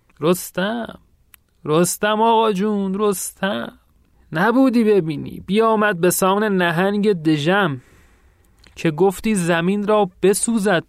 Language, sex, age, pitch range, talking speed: Persian, male, 30-49, 135-195 Hz, 95 wpm